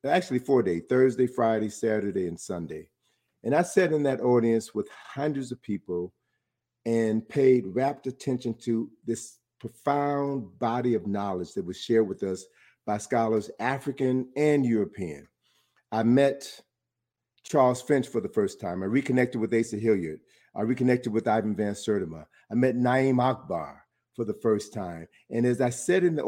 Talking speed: 160 wpm